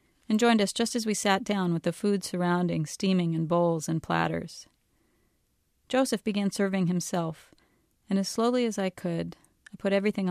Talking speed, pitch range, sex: 175 wpm, 160-200 Hz, female